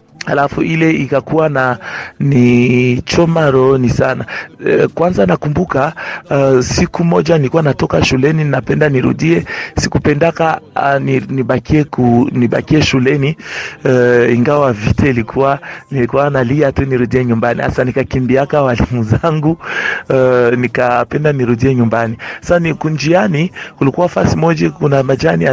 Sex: male